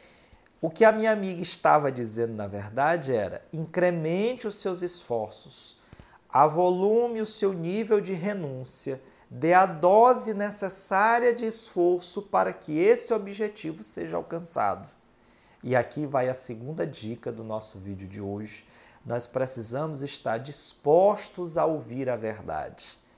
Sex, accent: male, Brazilian